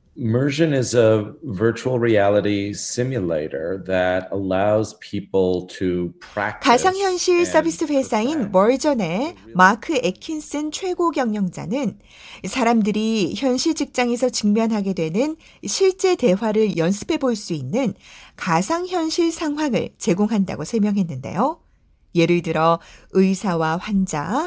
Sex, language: female, Korean